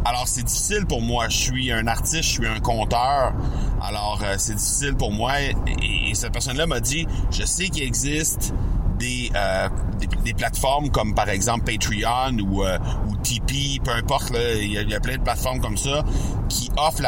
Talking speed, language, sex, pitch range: 195 wpm, French, male, 100-130 Hz